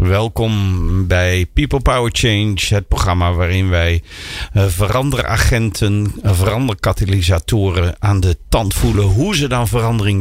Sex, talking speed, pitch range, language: male, 110 wpm, 90-110 Hz, Dutch